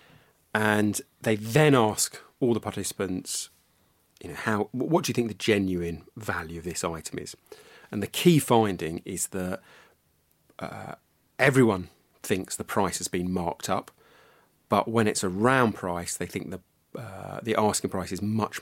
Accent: British